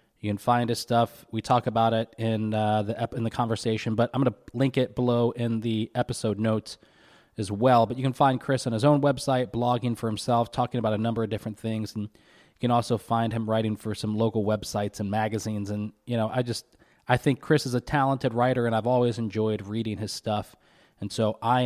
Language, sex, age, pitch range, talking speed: English, male, 20-39, 110-130 Hz, 230 wpm